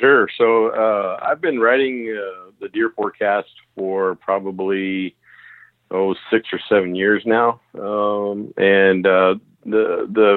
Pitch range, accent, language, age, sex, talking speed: 95-105 Hz, American, English, 50-69, male, 135 wpm